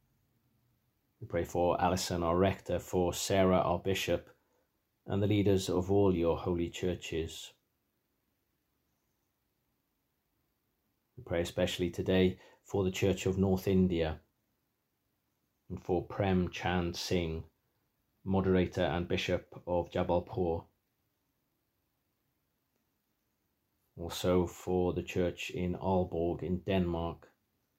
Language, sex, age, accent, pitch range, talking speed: English, male, 40-59, British, 85-95 Hz, 100 wpm